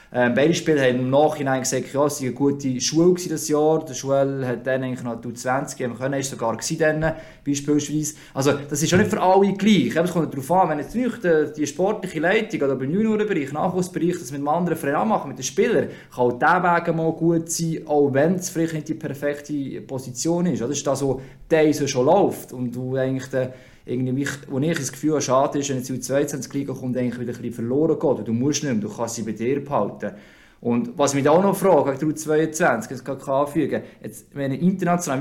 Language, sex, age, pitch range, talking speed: German, male, 20-39, 130-160 Hz, 210 wpm